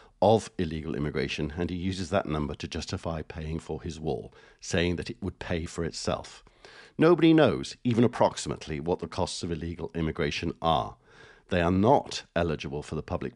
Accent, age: British, 50-69